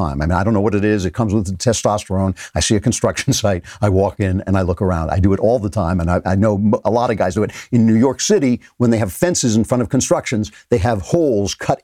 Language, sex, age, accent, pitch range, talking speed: English, male, 50-69, American, 100-125 Hz, 285 wpm